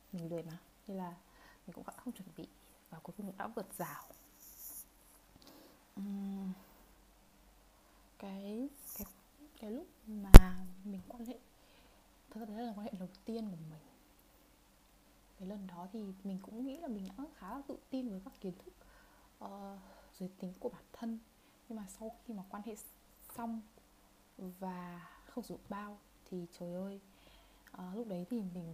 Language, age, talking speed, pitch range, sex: Vietnamese, 20-39, 165 wpm, 185-230 Hz, female